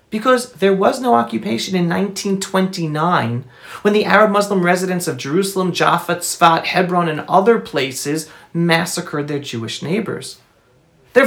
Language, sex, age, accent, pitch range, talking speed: English, male, 40-59, American, 175-245 Hz, 130 wpm